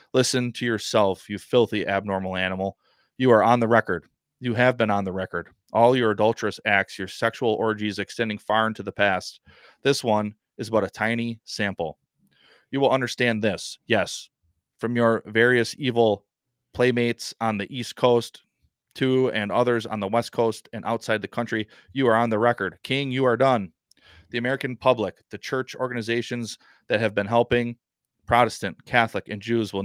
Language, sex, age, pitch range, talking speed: English, male, 30-49, 100-120 Hz, 175 wpm